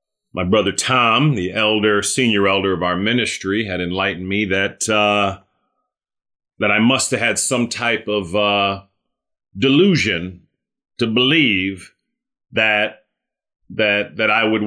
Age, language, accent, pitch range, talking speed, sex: 40-59, English, American, 85-110 Hz, 125 wpm, male